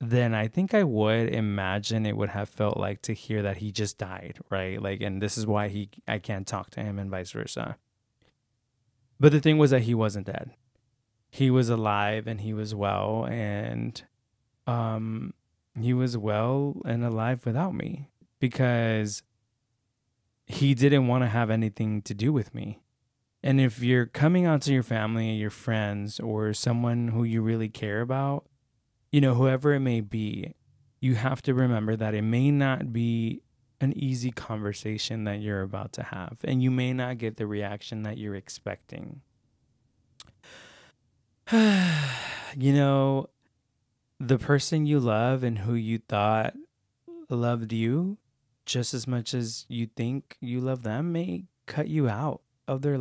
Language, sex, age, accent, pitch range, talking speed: English, male, 20-39, American, 110-130 Hz, 165 wpm